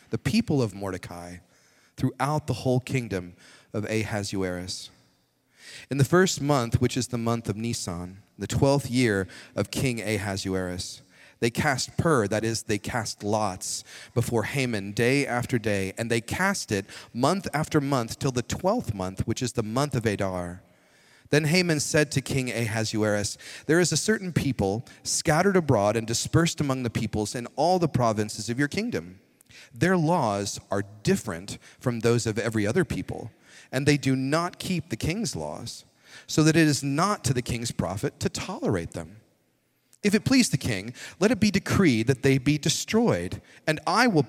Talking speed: 170 wpm